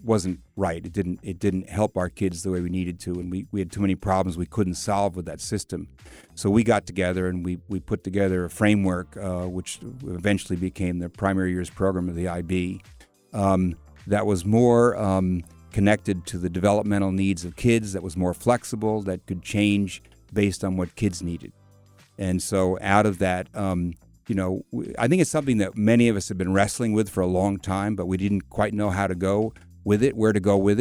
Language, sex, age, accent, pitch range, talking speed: English, male, 50-69, American, 90-105 Hz, 215 wpm